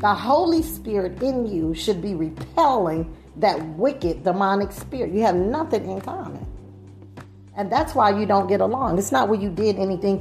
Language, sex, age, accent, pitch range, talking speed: English, female, 40-59, American, 180-240 Hz, 175 wpm